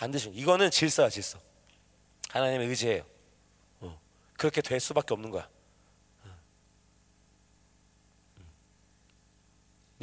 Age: 30-49